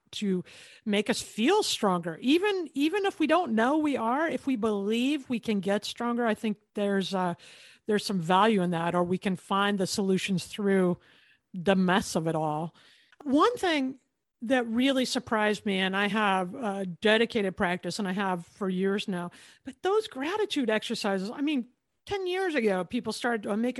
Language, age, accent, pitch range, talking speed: English, 50-69, American, 195-255 Hz, 180 wpm